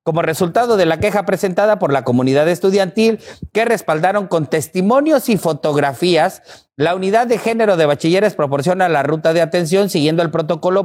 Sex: male